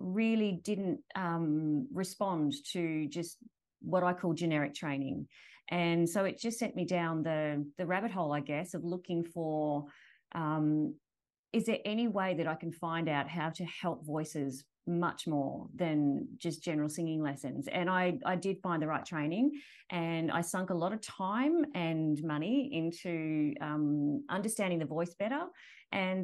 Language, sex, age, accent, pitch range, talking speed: English, female, 30-49, Australian, 160-200 Hz, 165 wpm